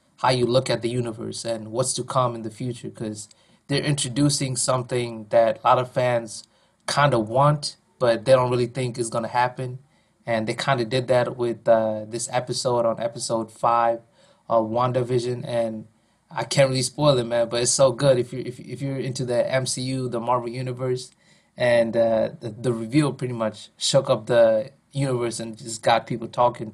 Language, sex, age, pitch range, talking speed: English, male, 20-39, 115-135 Hz, 195 wpm